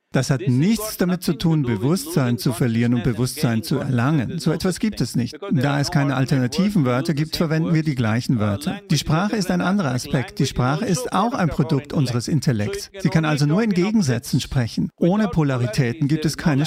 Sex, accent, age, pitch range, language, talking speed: male, German, 50-69, 130-170 Hz, English, 200 wpm